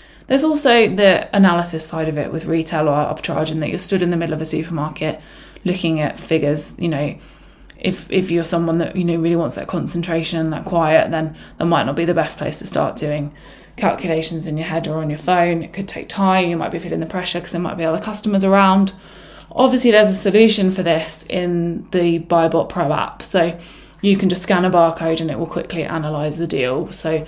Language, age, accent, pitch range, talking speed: English, 20-39, British, 160-195 Hz, 220 wpm